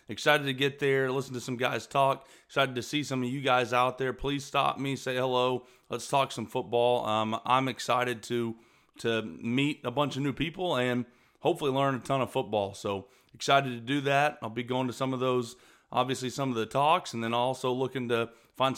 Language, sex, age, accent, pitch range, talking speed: English, male, 30-49, American, 120-140 Hz, 215 wpm